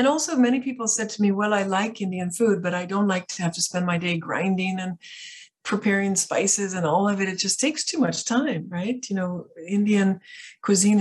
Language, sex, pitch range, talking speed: English, female, 170-210 Hz, 225 wpm